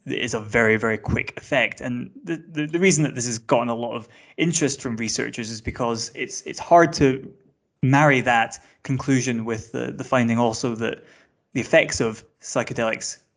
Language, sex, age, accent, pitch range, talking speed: English, male, 20-39, British, 115-140 Hz, 180 wpm